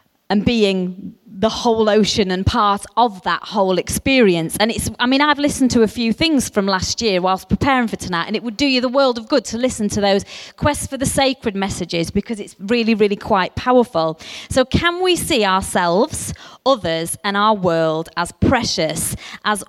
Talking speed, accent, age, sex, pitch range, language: 195 wpm, British, 30-49, female, 195-265 Hz, English